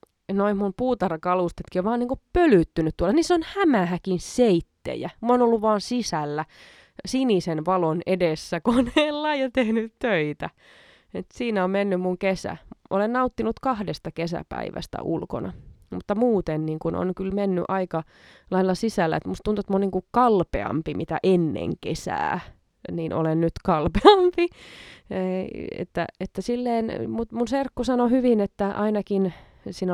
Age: 20-39